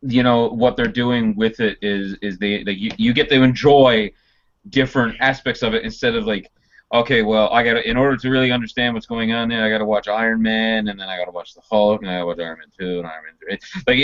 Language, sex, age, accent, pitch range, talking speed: English, male, 30-49, American, 105-150 Hz, 265 wpm